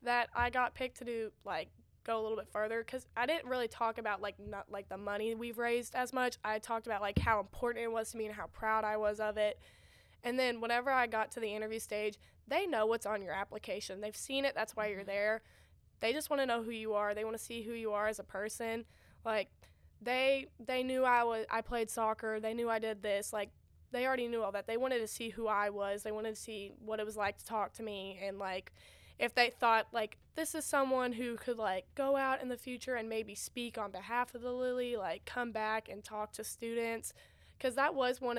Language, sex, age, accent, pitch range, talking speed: English, female, 10-29, American, 210-240 Hz, 250 wpm